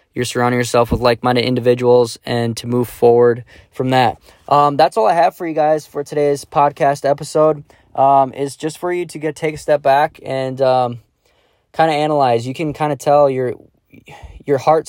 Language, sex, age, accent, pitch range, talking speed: English, male, 20-39, American, 120-140 Hz, 195 wpm